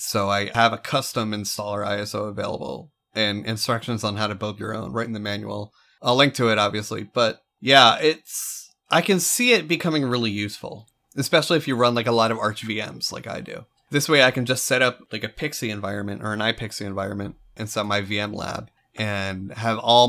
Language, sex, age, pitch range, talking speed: English, male, 30-49, 105-125 Hz, 210 wpm